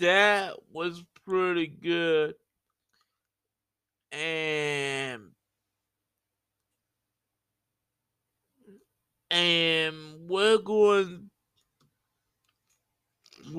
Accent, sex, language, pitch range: American, male, English, 115-170 Hz